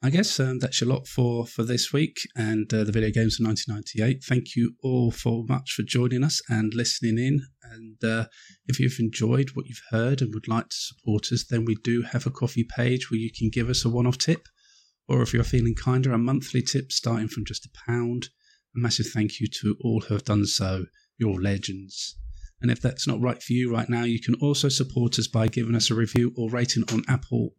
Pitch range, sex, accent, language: 110-125 Hz, male, British, English